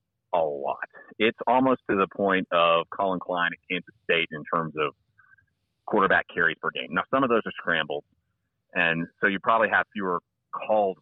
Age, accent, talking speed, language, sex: 30-49, American, 180 wpm, English, male